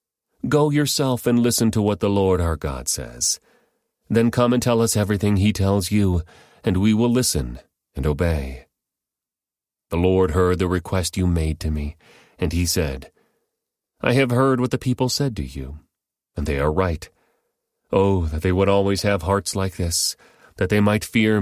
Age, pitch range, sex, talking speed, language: 40-59, 85-105 Hz, male, 180 wpm, English